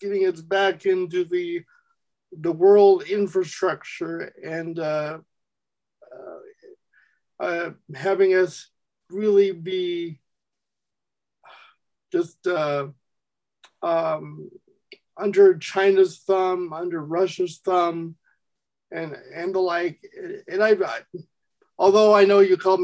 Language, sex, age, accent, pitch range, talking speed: English, male, 50-69, American, 175-220 Hz, 95 wpm